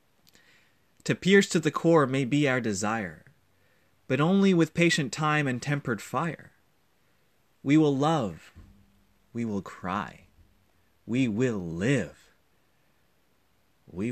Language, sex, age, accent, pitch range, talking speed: English, male, 30-49, American, 95-155 Hz, 115 wpm